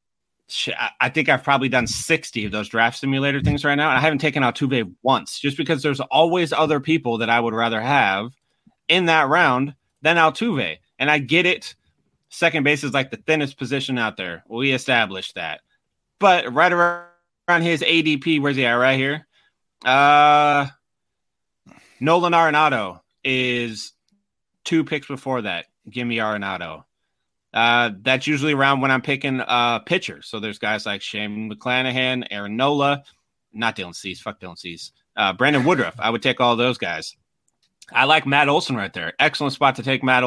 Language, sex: English, male